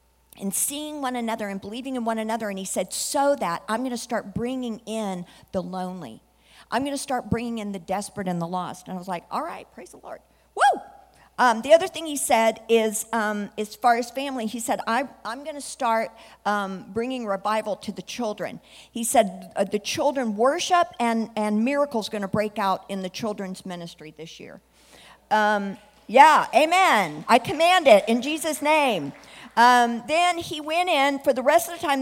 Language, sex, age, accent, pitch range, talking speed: English, female, 50-69, American, 210-280 Hz, 200 wpm